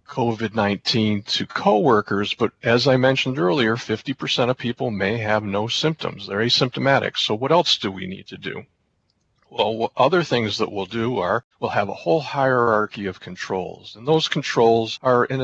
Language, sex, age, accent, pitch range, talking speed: English, male, 50-69, American, 100-120 Hz, 180 wpm